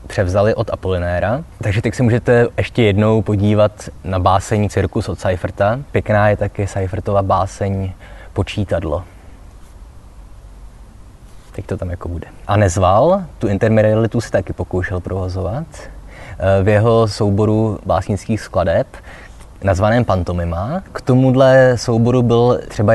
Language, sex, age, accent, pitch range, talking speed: Czech, male, 20-39, native, 95-115 Hz, 120 wpm